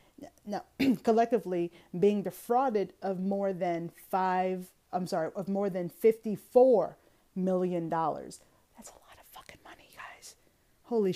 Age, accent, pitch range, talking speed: 30-49, American, 175-215 Hz, 125 wpm